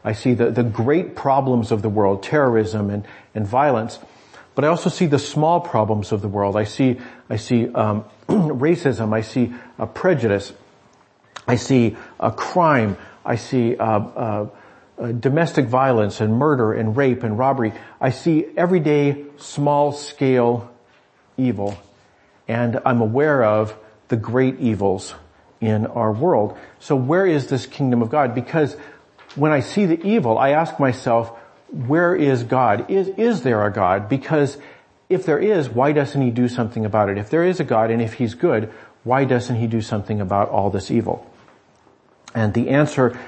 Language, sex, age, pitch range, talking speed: English, male, 50-69, 110-140 Hz, 170 wpm